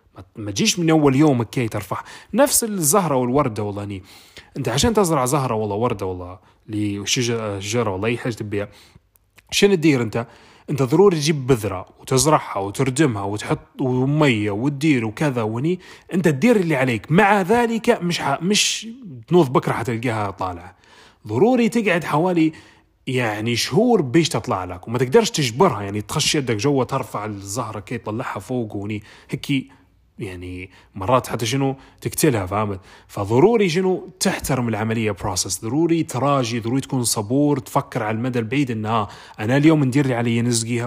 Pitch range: 110-155 Hz